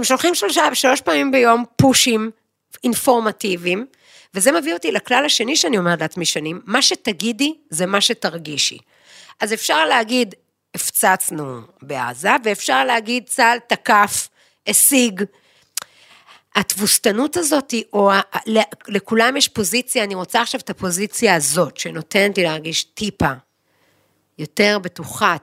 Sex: female